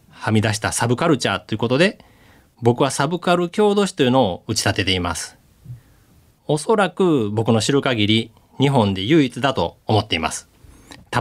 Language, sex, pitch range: Japanese, male, 105-155 Hz